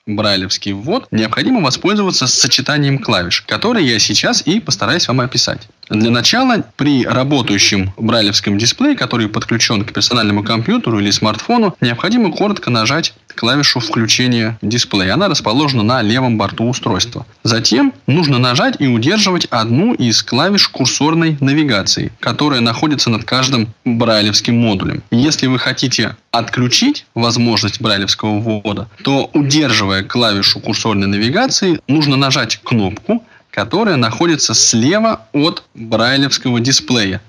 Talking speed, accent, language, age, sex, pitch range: 120 wpm, native, Russian, 20-39, male, 110-140 Hz